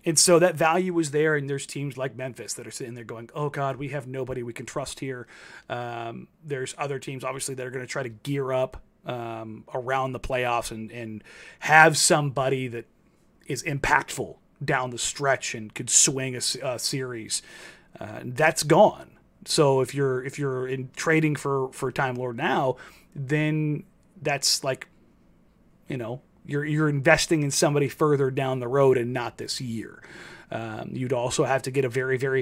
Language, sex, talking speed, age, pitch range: English, male, 185 wpm, 30-49, 130-160 Hz